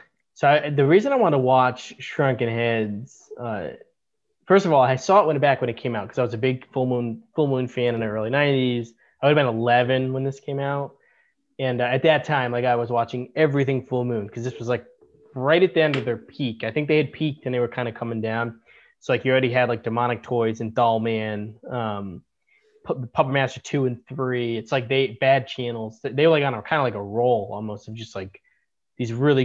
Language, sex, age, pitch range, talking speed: English, male, 20-39, 120-145 Hz, 235 wpm